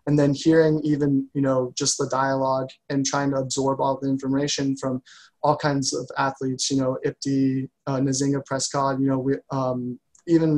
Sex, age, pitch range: male, 20-39, 135-145 Hz